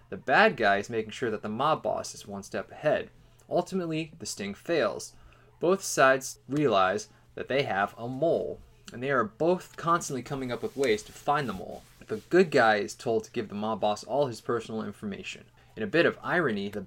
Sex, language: male, English